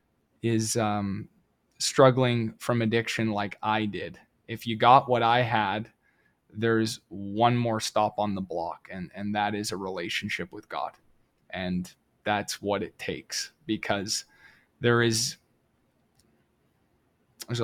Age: 20-39